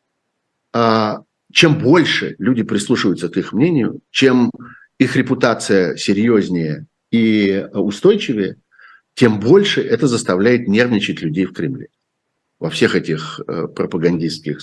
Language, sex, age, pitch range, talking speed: Russian, male, 60-79, 105-140 Hz, 105 wpm